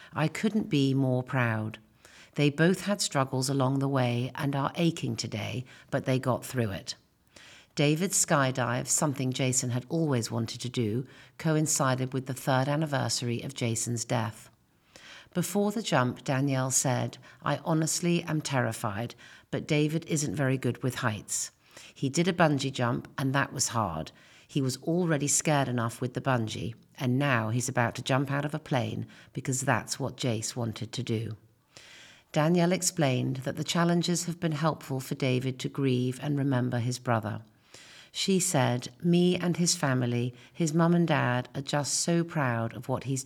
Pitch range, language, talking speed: 120-150 Hz, English, 170 wpm